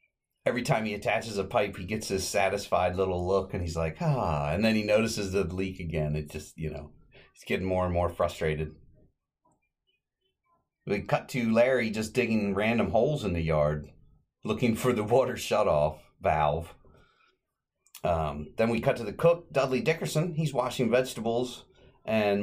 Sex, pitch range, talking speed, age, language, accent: male, 80-105 Hz, 170 wpm, 40-59, English, American